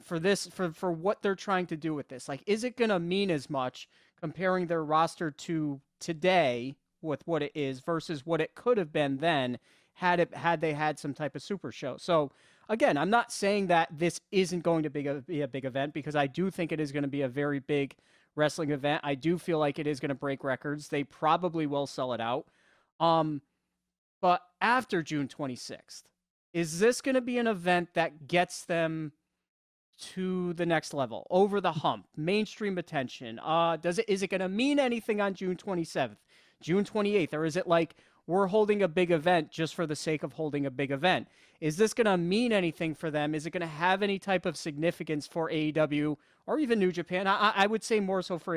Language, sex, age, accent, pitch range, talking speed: English, male, 30-49, American, 150-185 Hz, 220 wpm